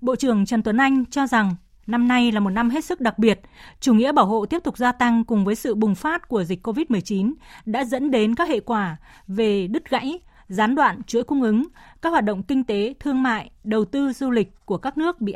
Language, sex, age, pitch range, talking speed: Vietnamese, female, 20-39, 210-265 Hz, 240 wpm